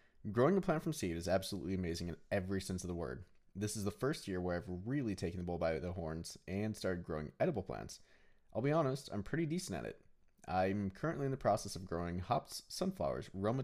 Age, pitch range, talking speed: 20-39, 95-120 Hz, 225 wpm